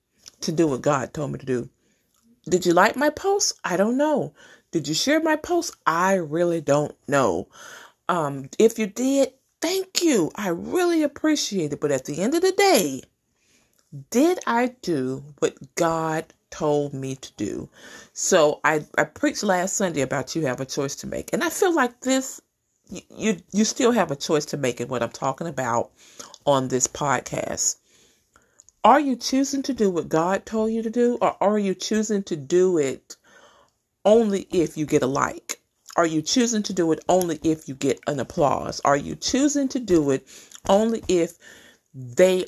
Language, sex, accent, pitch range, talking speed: English, female, American, 150-240 Hz, 185 wpm